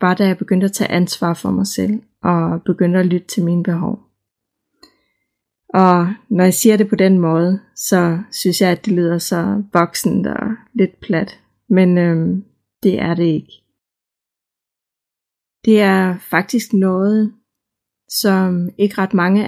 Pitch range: 175-210 Hz